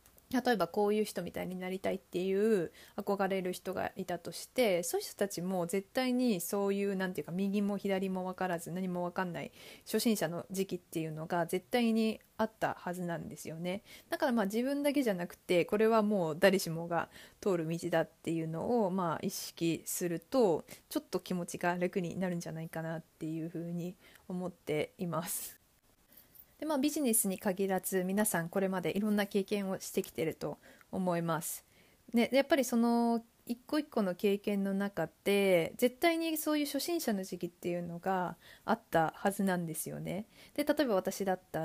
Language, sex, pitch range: Japanese, female, 175-220 Hz